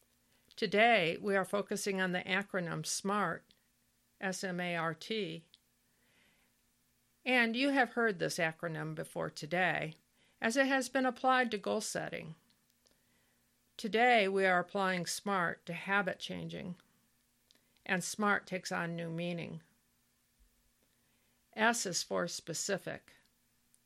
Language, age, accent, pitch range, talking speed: English, 50-69, American, 170-215 Hz, 110 wpm